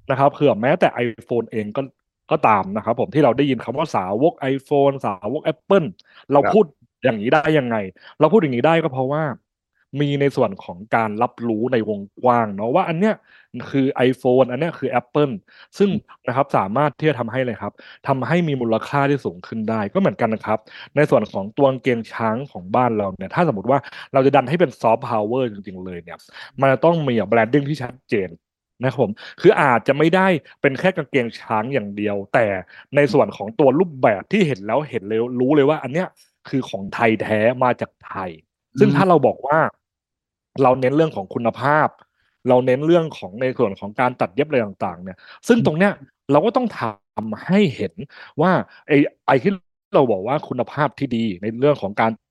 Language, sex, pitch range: English, male, 115-150 Hz